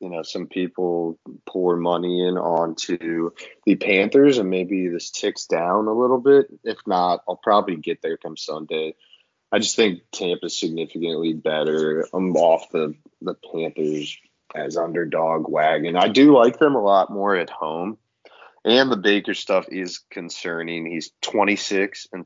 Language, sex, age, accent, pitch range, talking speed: English, male, 20-39, American, 80-105 Hz, 155 wpm